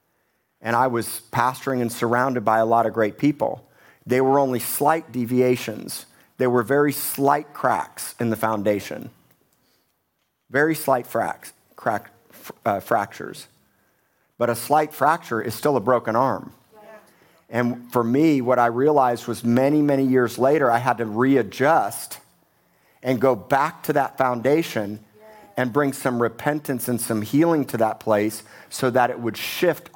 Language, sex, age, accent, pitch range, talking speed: English, male, 50-69, American, 115-130 Hz, 150 wpm